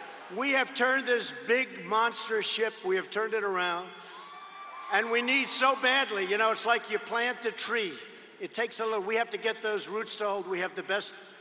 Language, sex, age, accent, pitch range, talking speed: English, male, 60-79, American, 205-270 Hz, 215 wpm